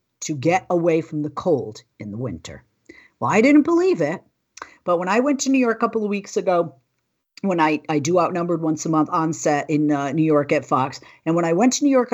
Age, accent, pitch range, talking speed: 50-69, American, 145-190 Hz, 240 wpm